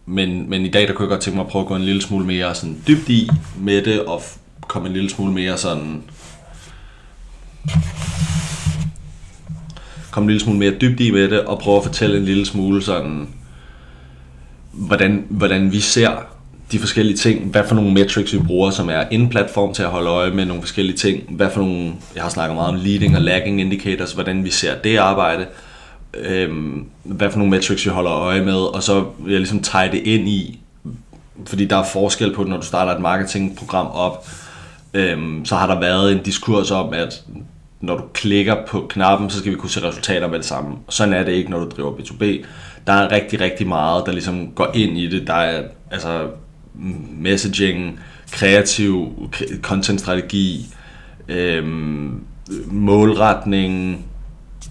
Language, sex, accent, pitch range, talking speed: Danish, male, native, 85-100 Hz, 175 wpm